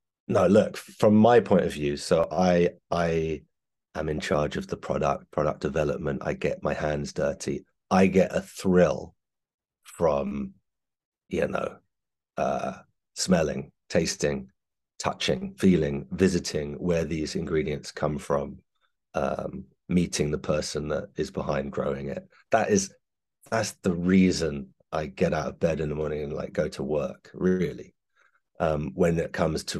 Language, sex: English, male